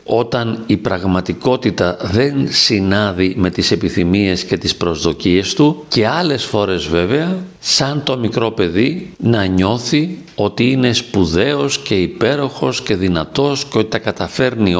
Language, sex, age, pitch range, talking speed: Greek, male, 50-69, 100-130 Hz, 135 wpm